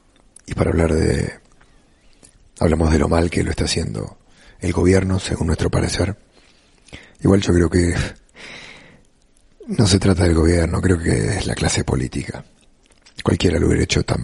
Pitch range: 85-95 Hz